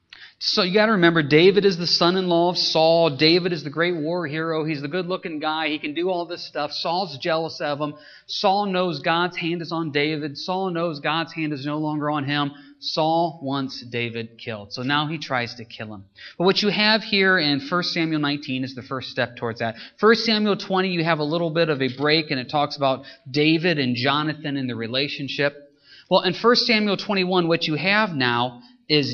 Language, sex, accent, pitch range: English, male, American, 145-195 Hz